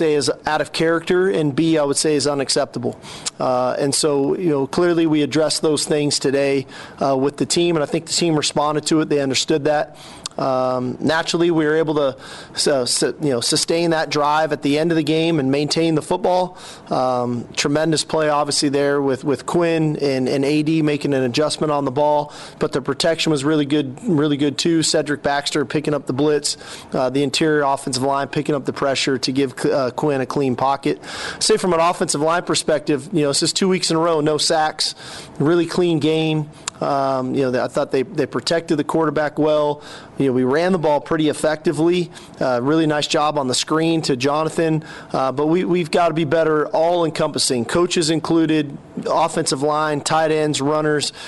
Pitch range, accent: 140-165 Hz, American